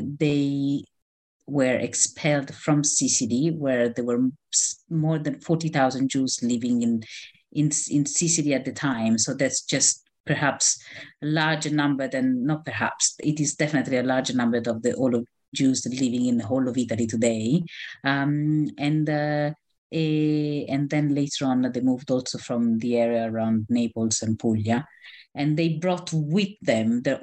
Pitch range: 115-150 Hz